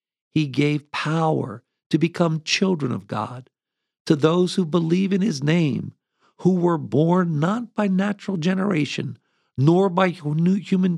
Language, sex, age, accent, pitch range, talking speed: English, male, 50-69, American, 140-180 Hz, 135 wpm